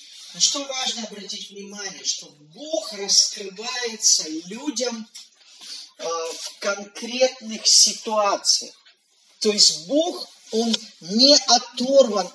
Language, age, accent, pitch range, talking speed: Russian, 40-59, native, 200-255 Hz, 90 wpm